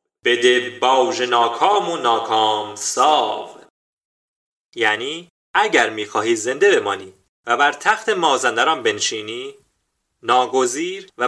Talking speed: 95 wpm